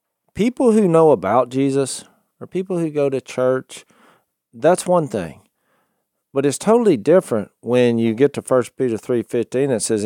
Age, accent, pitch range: 40-59, American, 100-130 Hz